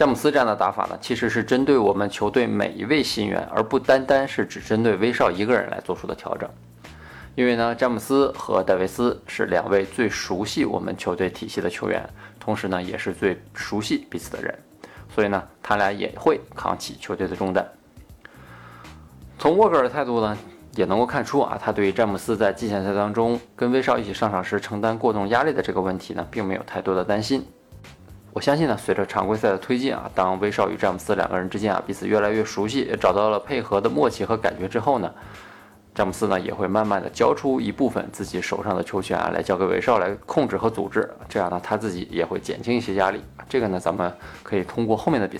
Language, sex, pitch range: Chinese, male, 95-115 Hz